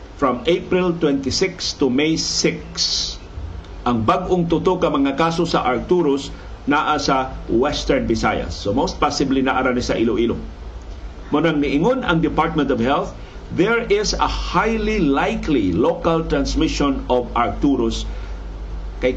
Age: 50-69